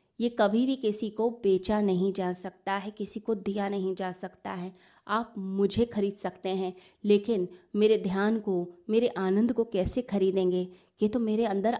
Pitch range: 190-225 Hz